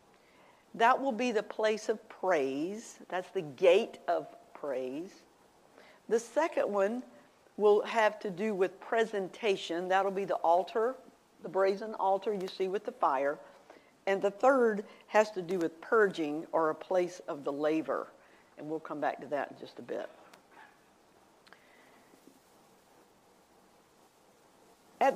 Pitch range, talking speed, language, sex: 185-240 Hz, 140 wpm, English, female